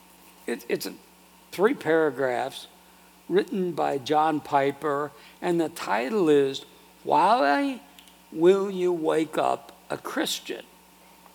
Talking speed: 95 wpm